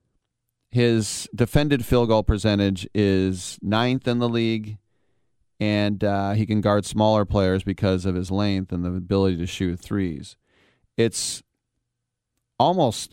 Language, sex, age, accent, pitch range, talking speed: English, male, 40-59, American, 95-115 Hz, 135 wpm